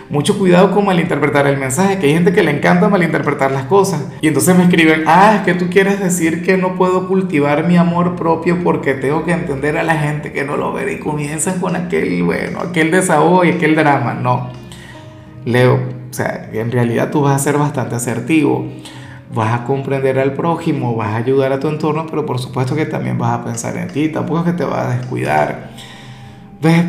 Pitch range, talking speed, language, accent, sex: 135-180 Hz, 210 wpm, Spanish, Venezuelan, male